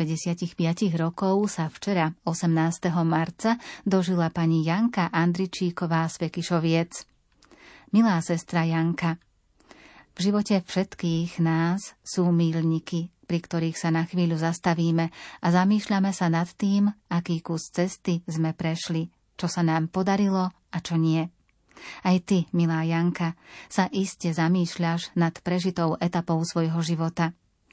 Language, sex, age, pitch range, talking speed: Slovak, female, 30-49, 165-180 Hz, 120 wpm